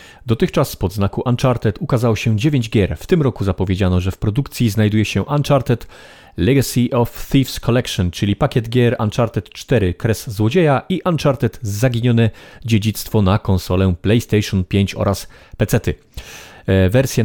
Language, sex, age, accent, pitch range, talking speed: Polish, male, 40-59, native, 95-125 Hz, 140 wpm